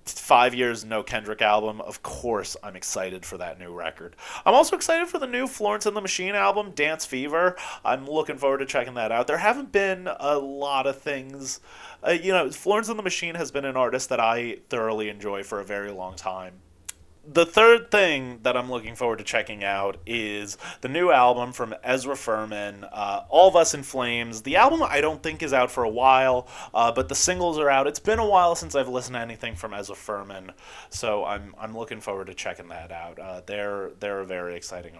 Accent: American